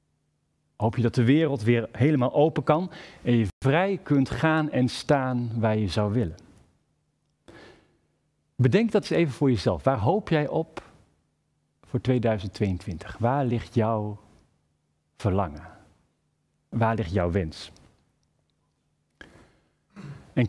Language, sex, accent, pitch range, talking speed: Dutch, male, Dutch, 105-140 Hz, 120 wpm